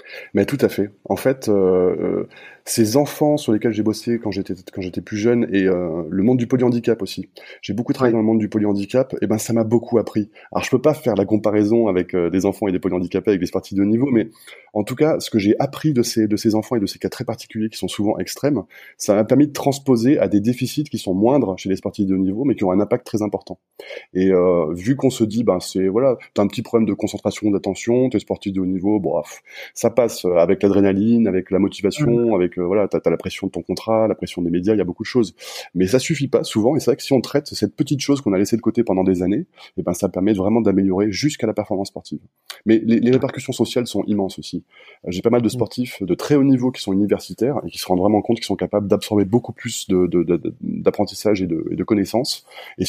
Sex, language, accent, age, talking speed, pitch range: male, French, French, 20-39, 260 wpm, 95-120 Hz